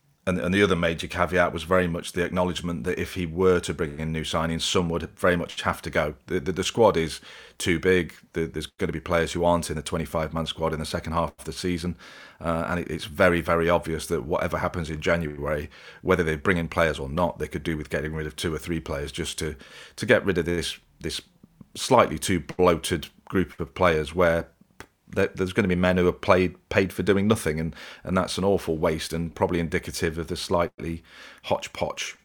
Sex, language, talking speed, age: male, English, 220 wpm, 40-59